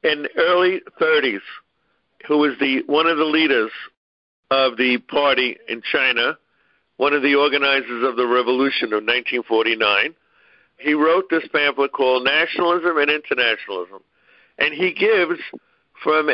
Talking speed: 135 wpm